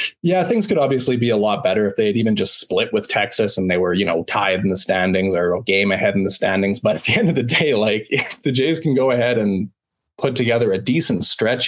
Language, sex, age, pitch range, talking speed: English, male, 20-39, 105-130 Hz, 255 wpm